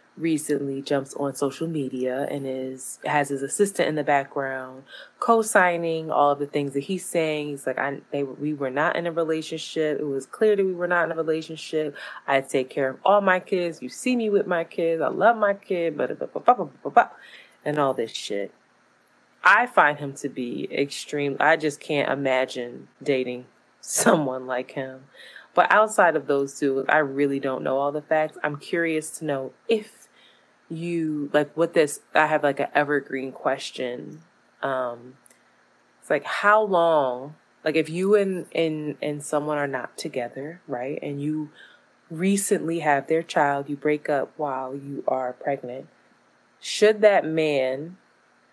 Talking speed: 170 wpm